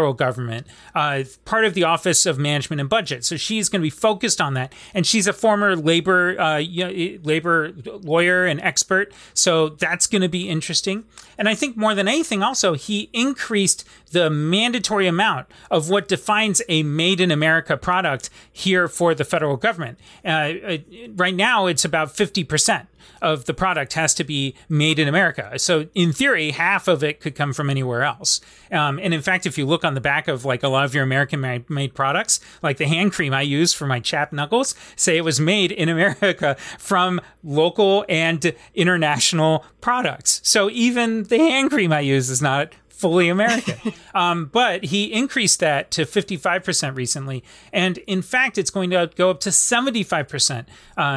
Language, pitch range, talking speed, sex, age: English, 150-195 Hz, 180 wpm, male, 30-49